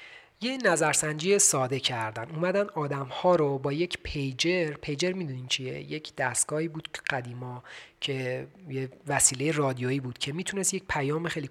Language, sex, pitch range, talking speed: Persian, male, 130-160 Hz, 145 wpm